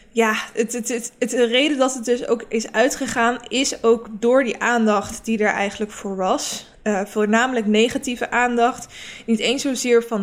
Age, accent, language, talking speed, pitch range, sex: 20-39, Dutch, Dutch, 160 wpm, 215-245 Hz, female